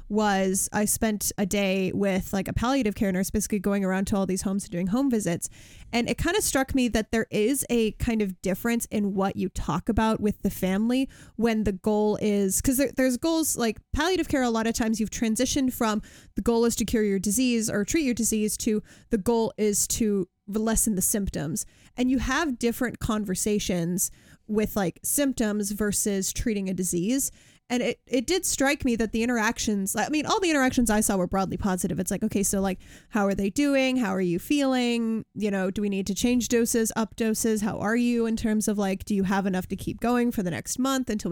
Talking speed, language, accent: 220 wpm, English, American